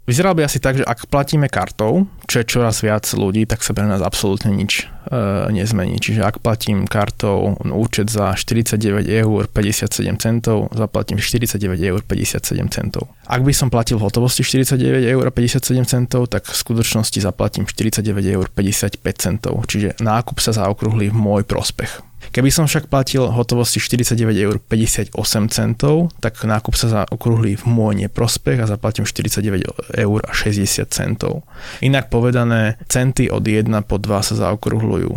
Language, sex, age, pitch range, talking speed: Slovak, male, 20-39, 105-120 Hz, 140 wpm